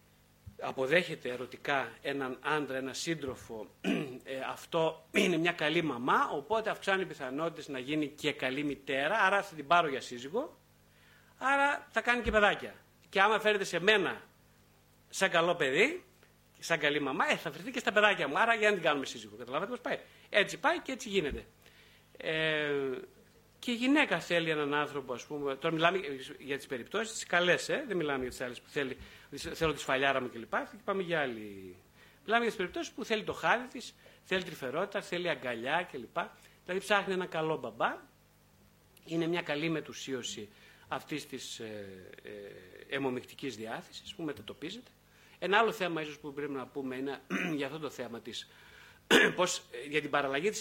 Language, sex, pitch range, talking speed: Greek, male, 130-180 Hz, 165 wpm